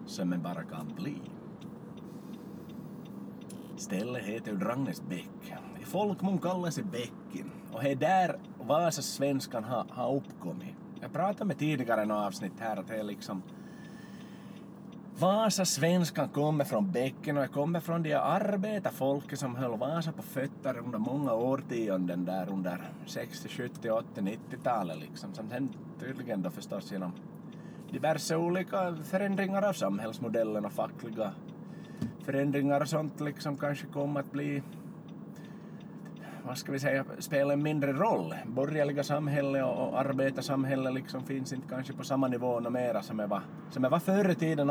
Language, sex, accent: Swedish, male, Finnish